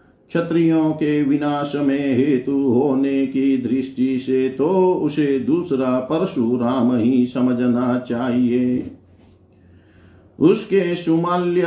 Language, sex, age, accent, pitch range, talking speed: Hindi, male, 50-69, native, 130-150 Hz, 95 wpm